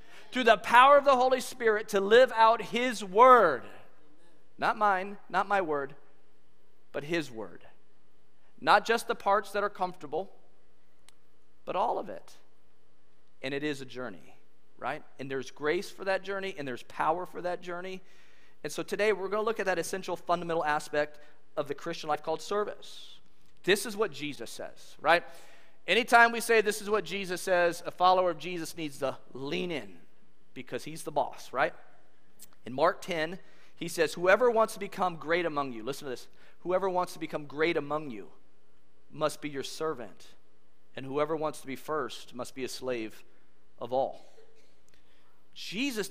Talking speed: 175 wpm